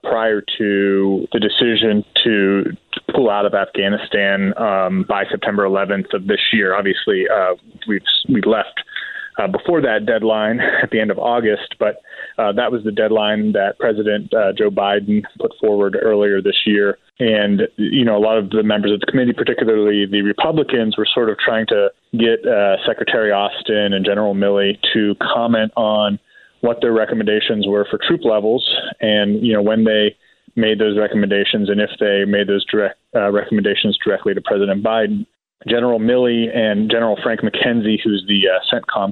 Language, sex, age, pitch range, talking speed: English, male, 20-39, 100-115 Hz, 175 wpm